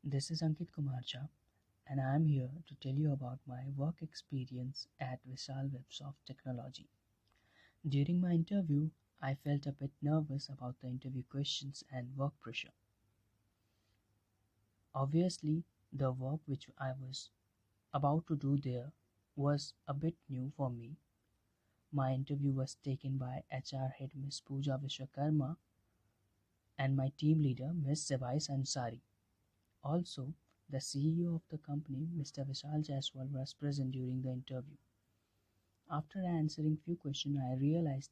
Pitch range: 125-150 Hz